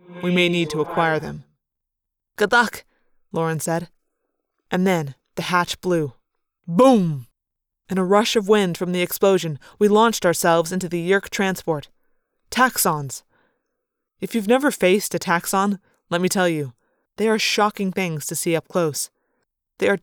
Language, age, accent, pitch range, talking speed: English, 20-39, American, 165-200 Hz, 155 wpm